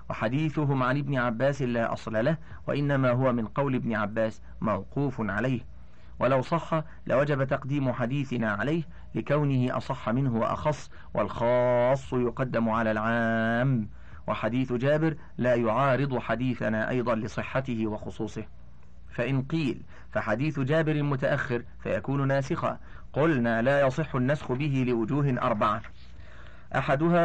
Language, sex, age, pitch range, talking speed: Arabic, male, 50-69, 110-140 Hz, 115 wpm